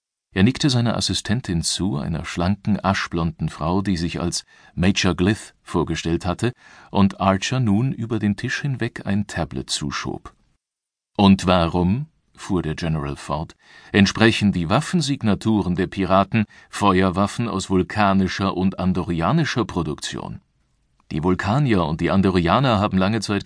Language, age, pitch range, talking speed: German, 50-69, 90-105 Hz, 130 wpm